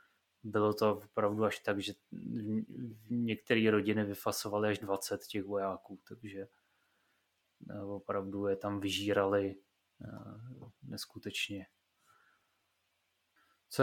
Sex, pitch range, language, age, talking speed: male, 105-115 Hz, Czech, 20-39, 85 wpm